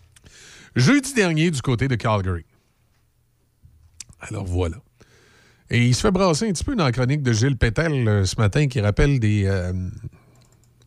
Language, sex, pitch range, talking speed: French, male, 110-135 Hz, 160 wpm